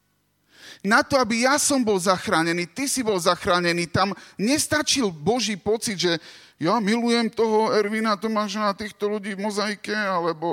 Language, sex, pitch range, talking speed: Slovak, male, 160-225 Hz, 150 wpm